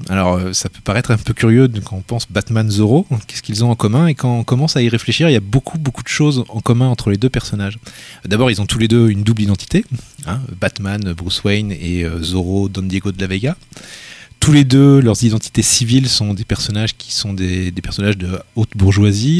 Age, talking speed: 30-49, 230 wpm